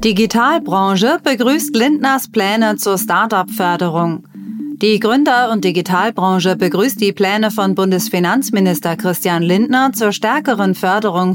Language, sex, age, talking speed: German, female, 30-49, 105 wpm